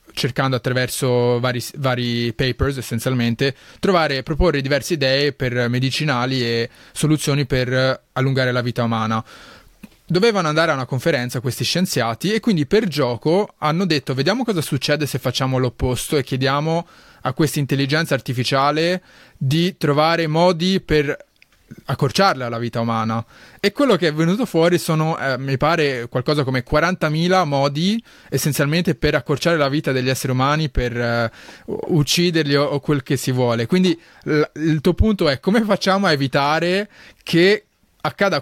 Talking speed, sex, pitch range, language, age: 150 wpm, male, 130-165 Hz, Italian, 20-39